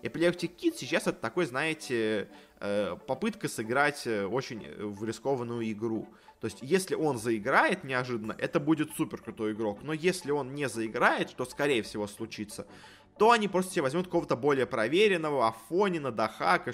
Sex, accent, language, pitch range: male, native, Russian, 110-150 Hz